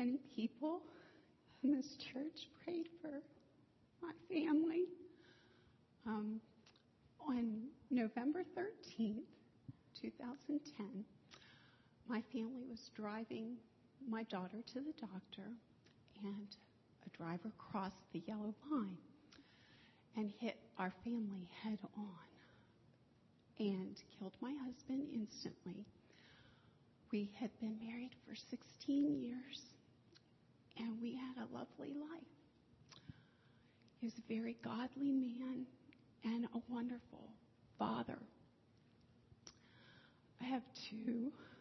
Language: English